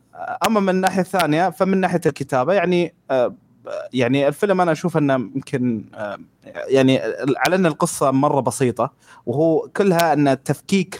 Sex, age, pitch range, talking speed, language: male, 30-49, 125-165 Hz, 140 wpm, Arabic